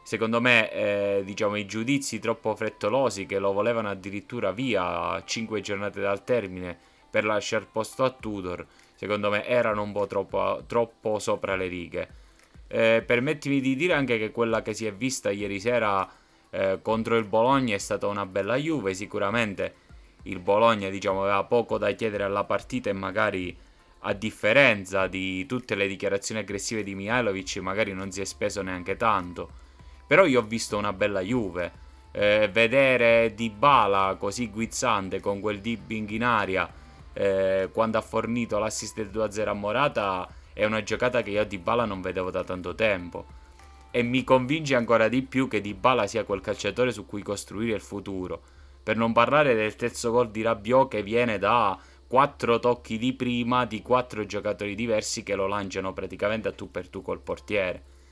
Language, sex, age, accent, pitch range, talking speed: Italian, male, 20-39, native, 95-115 Hz, 170 wpm